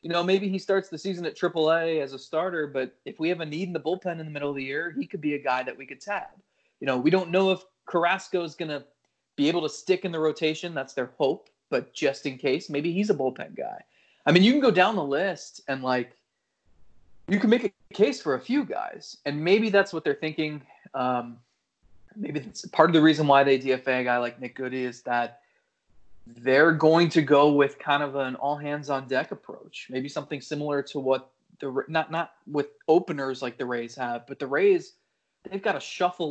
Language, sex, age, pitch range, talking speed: English, male, 30-49, 135-175 Hz, 235 wpm